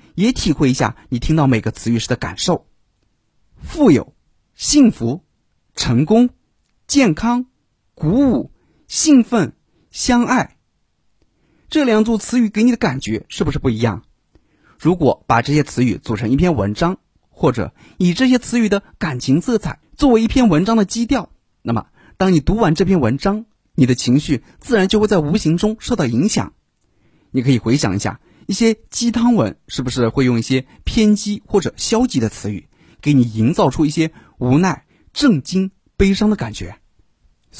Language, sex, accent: Chinese, male, native